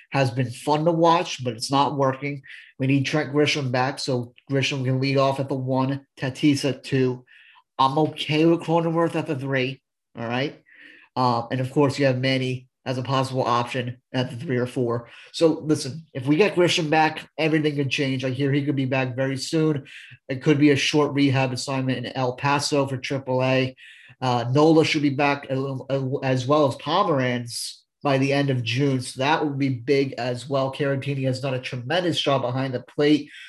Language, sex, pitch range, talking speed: English, male, 130-150 Hz, 200 wpm